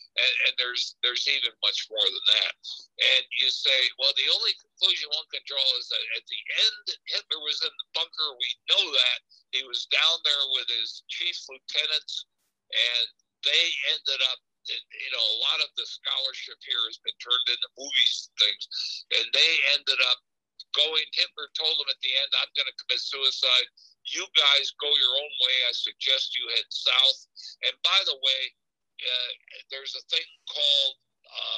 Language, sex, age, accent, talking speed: English, male, 60-79, American, 180 wpm